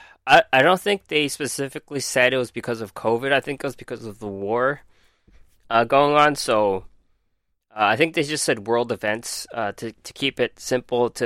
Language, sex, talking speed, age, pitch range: English, male, 210 wpm, 20-39, 110-145 Hz